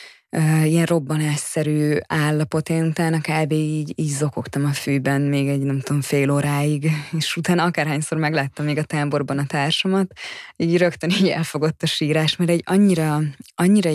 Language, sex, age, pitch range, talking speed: Hungarian, female, 20-39, 150-175 Hz, 155 wpm